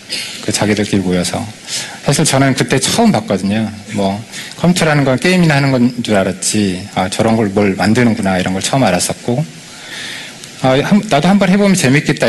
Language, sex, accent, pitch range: Korean, male, native, 105-145 Hz